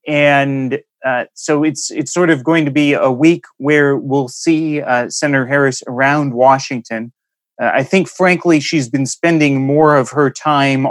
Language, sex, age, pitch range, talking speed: English, male, 30-49, 125-150 Hz, 170 wpm